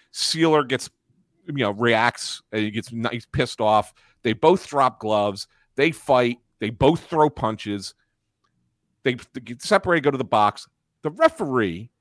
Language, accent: English, American